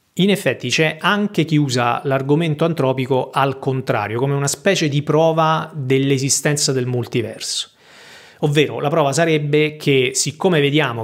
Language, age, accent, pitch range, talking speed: Italian, 30-49, native, 130-160 Hz, 135 wpm